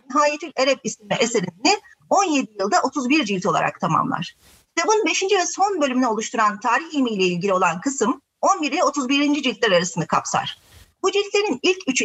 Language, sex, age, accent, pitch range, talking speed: Turkish, female, 40-59, native, 220-290 Hz, 150 wpm